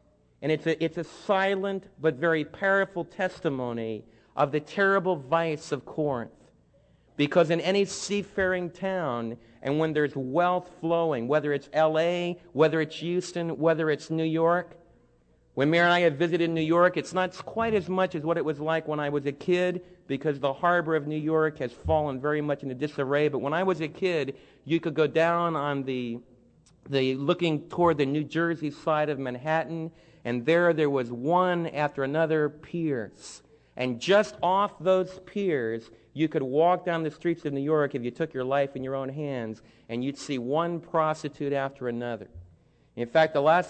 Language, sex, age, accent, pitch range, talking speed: English, male, 50-69, American, 135-170 Hz, 185 wpm